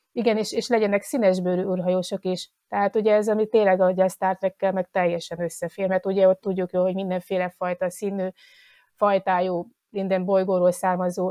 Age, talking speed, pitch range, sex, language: 30-49, 160 wpm, 185-205 Hz, female, Hungarian